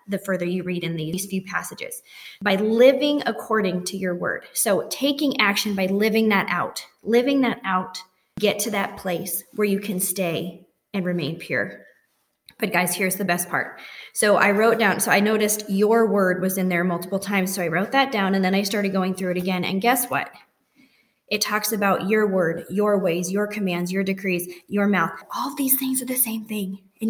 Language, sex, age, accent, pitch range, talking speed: English, female, 20-39, American, 185-220 Hz, 205 wpm